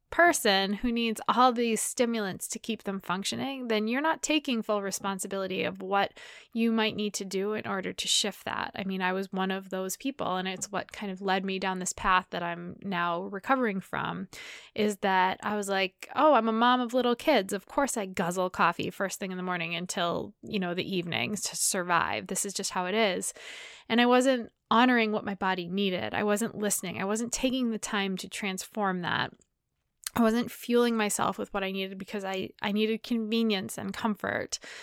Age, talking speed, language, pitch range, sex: 20-39, 205 wpm, English, 190-235 Hz, female